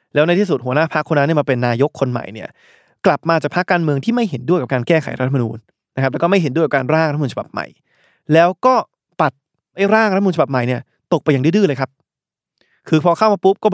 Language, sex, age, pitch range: Thai, male, 20-39, 135-170 Hz